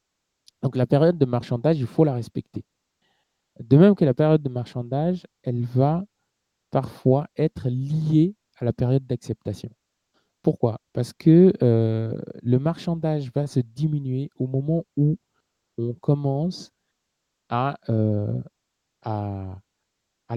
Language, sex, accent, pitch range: French, male, French, 115-145 Hz